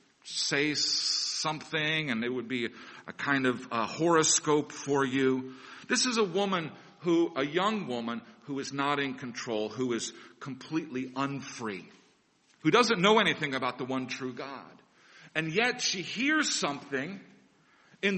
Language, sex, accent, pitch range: English, male, American, 135-185 Hz